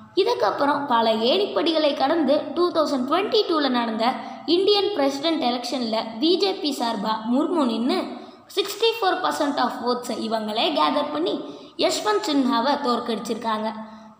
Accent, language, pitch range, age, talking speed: native, Tamil, 230-320 Hz, 20-39, 105 wpm